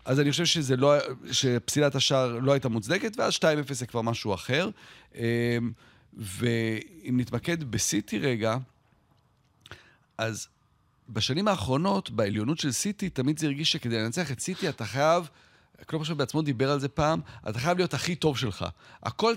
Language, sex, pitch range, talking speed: Hebrew, male, 120-170 Hz, 150 wpm